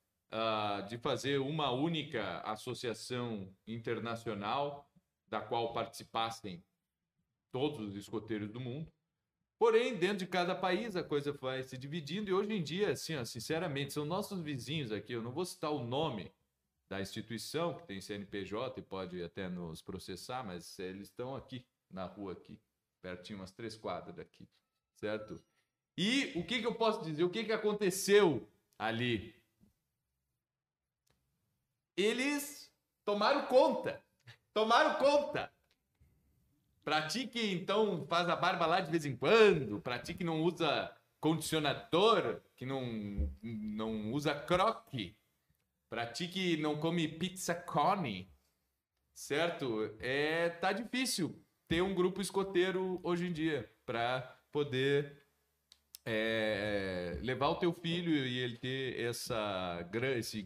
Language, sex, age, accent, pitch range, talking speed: Portuguese, male, 40-59, Brazilian, 110-175 Hz, 130 wpm